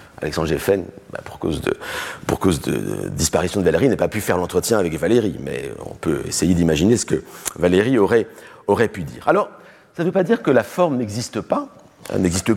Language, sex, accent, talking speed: French, male, French, 195 wpm